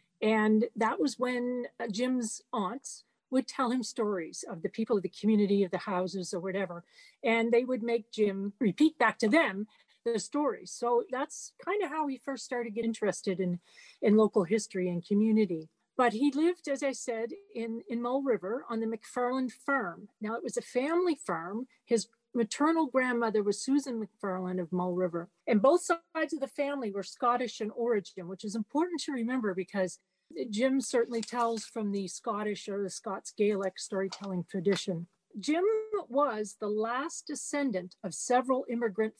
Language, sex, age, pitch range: English, female, 40-59, 195-260 Hz